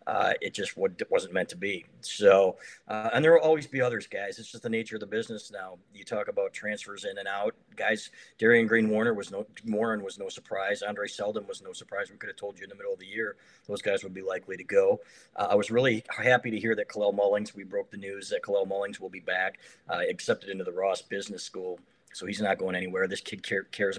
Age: 40-59